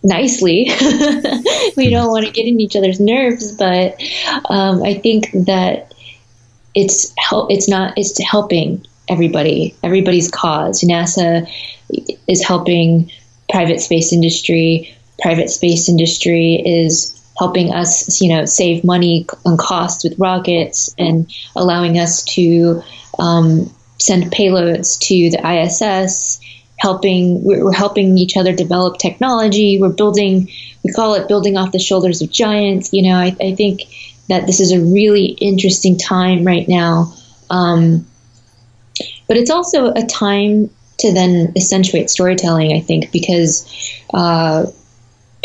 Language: English